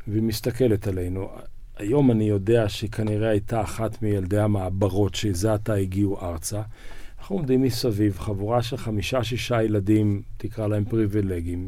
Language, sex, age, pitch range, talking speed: Hebrew, male, 50-69, 100-120 Hz, 135 wpm